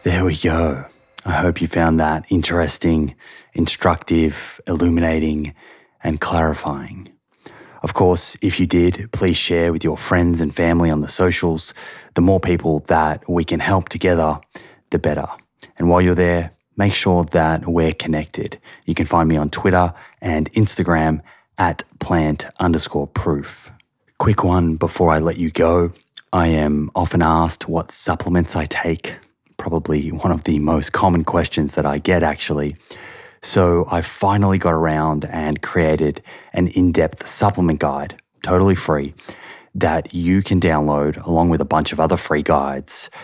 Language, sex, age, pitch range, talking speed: English, male, 20-39, 80-90 Hz, 155 wpm